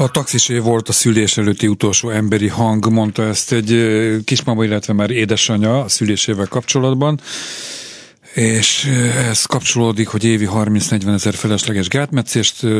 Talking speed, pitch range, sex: 130 wpm, 105-125 Hz, male